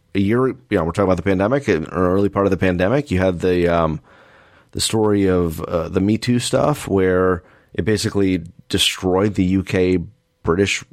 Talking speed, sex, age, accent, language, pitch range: 185 wpm, male, 30-49, American, English, 90-115 Hz